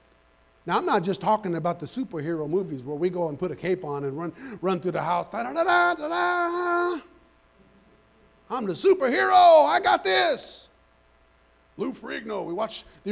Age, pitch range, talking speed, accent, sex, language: 50-69, 210-280 Hz, 185 wpm, American, male, English